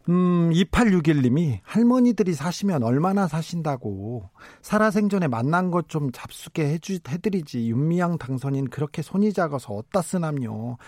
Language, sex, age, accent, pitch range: Korean, male, 40-59, native, 135-185 Hz